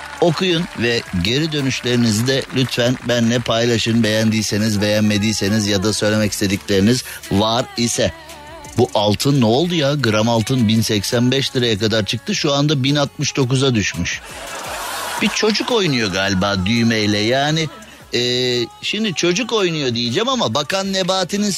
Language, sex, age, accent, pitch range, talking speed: Turkish, male, 50-69, native, 115-190 Hz, 125 wpm